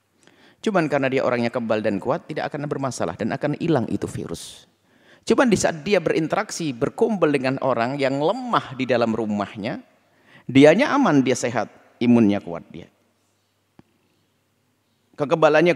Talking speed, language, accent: 135 wpm, Indonesian, native